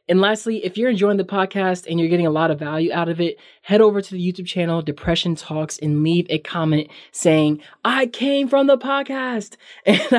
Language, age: English, 20-39